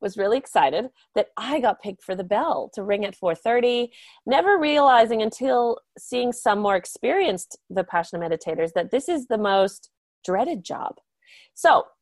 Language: English